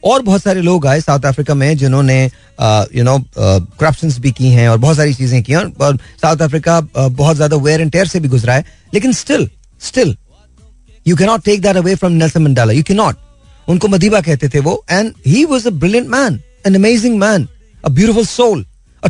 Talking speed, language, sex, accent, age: 180 wpm, Hindi, male, native, 40-59